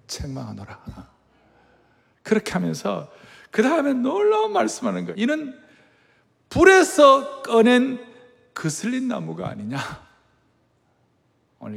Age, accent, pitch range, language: 60-79, native, 155-245 Hz, Korean